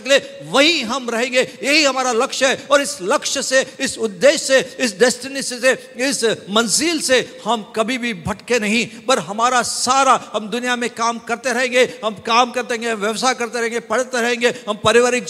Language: Hindi